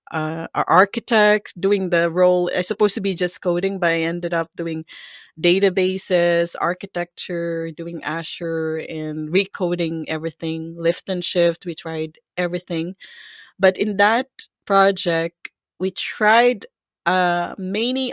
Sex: female